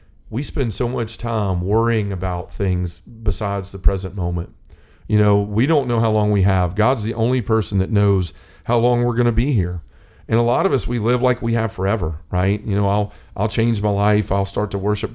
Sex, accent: male, American